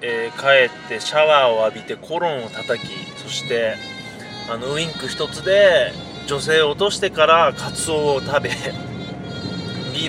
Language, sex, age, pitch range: Japanese, male, 20-39, 120-160 Hz